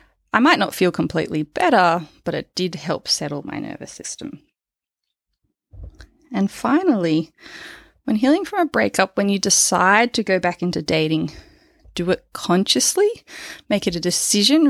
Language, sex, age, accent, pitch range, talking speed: English, female, 20-39, Australian, 160-195 Hz, 145 wpm